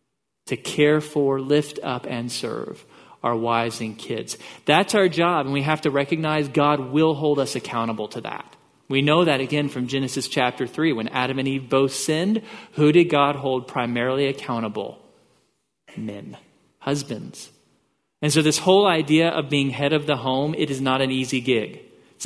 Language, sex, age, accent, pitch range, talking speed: English, male, 40-59, American, 125-155 Hz, 180 wpm